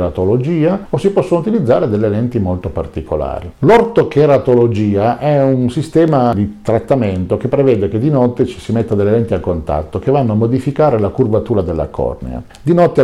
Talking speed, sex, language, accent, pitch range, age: 165 wpm, male, Italian, native, 95-135 Hz, 50-69